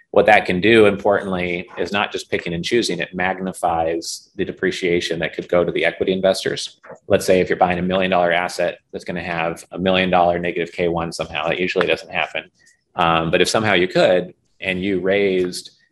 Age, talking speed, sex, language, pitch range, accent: 30-49, 195 wpm, male, English, 85-95 Hz, American